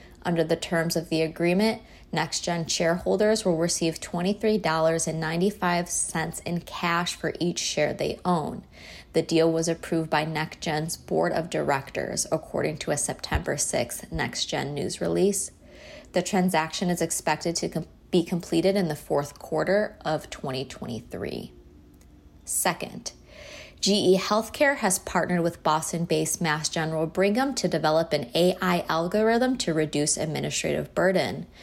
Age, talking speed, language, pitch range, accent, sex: 20-39, 125 wpm, English, 155-190 Hz, American, female